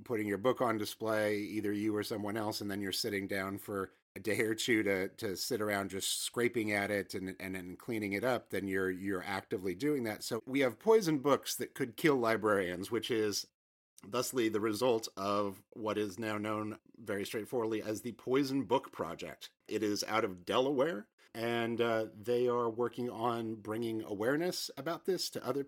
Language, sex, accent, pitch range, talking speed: English, male, American, 105-125 Hz, 195 wpm